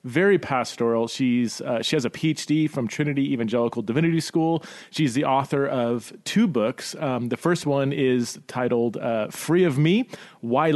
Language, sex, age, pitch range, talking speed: English, male, 30-49, 120-160 Hz, 165 wpm